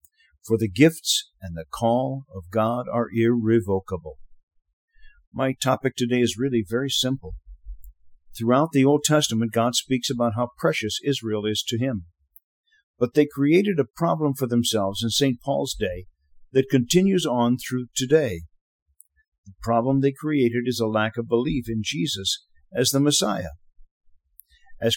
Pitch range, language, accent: 110-145 Hz, English, American